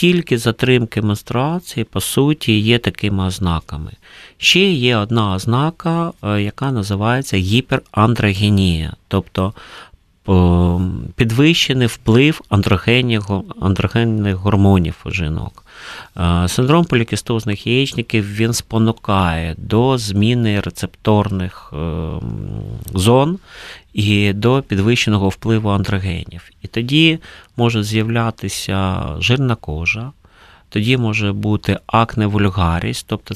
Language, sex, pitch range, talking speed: Ukrainian, male, 95-120 Hz, 85 wpm